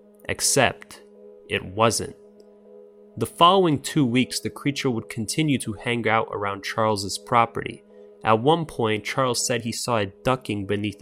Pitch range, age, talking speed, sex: 105-130 Hz, 20-39, 145 wpm, male